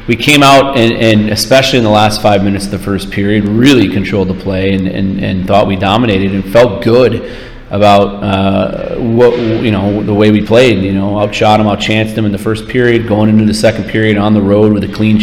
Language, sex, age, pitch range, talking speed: English, male, 30-49, 100-110 Hz, 230 wpm